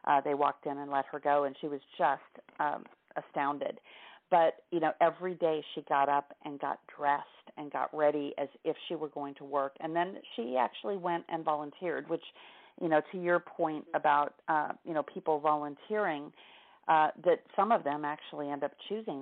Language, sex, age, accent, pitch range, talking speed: English, female, 40-59, American, 145-170 Hz, 195 wpm